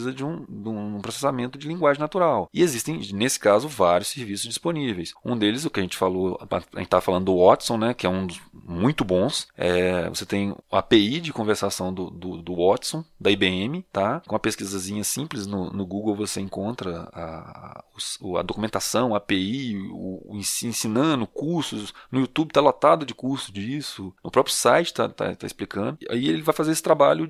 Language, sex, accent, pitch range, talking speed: Portuguese, male, Brazilian, 100-150 Hz, 195 wpm